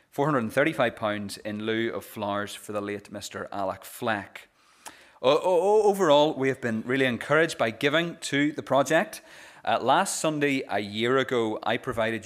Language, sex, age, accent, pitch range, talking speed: English, male, 30-49, British, 110-135 Hz, 145 wpm